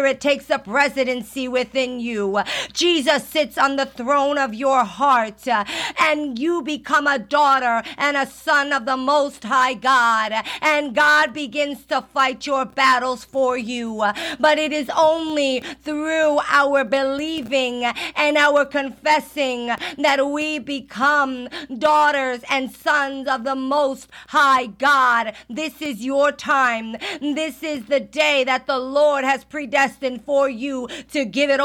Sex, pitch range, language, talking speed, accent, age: female, 250-295 Hz, English, 145 wpm, American, 50-69